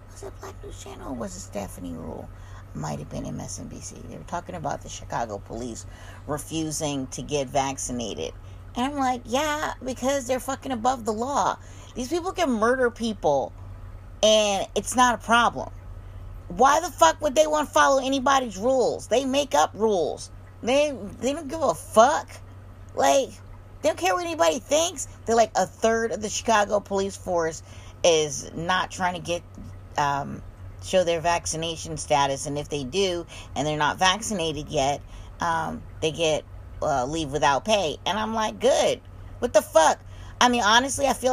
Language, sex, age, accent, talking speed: English, female, 40-59, American, 170 wpm